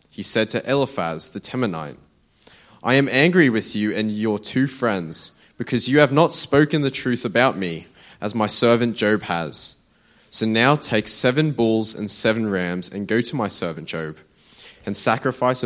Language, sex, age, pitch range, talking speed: English, male, 20-39, 95-125 Hz, 175 wpm